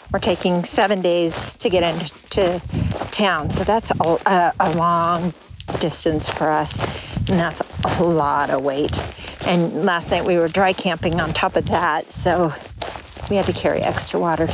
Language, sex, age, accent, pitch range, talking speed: English, female, 50-69, American, 165-195 Hz, 160 wpm